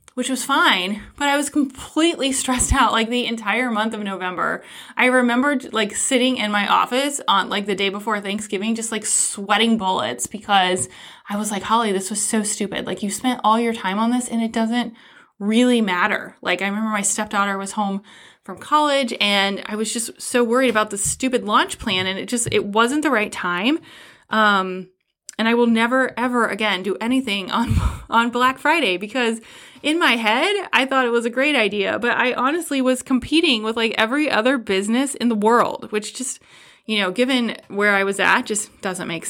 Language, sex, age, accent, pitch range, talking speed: English, female, 20-39, American, 205-255 Hz, 200 wpm